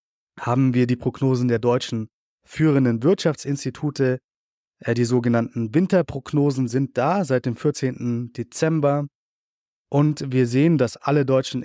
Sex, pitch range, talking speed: male, 120-145 Hz, 120 wpm